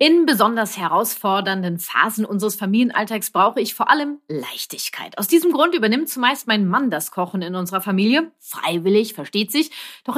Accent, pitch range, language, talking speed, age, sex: German, 195-270 Hz, German, 160 wpm, 30-49, female